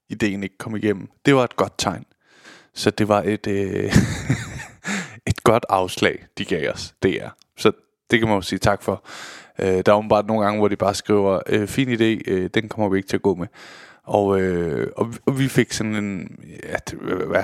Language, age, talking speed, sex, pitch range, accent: Danish, 20-39, 215 wpm, male, 105-135 Hz, native